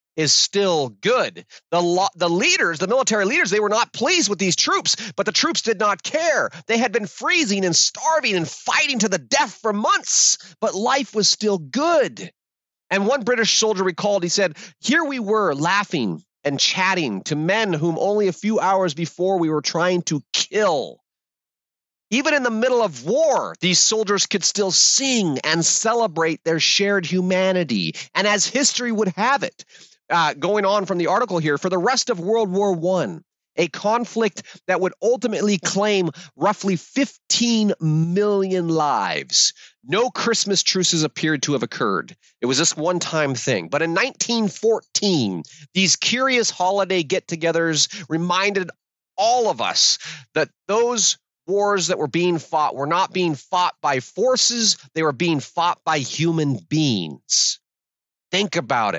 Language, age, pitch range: English, 30-49, 170-220 Hz